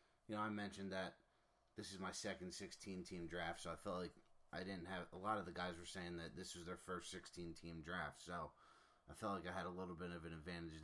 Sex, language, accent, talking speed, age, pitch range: male, English, American, 245 wpm, 30-49, 85-95 Hz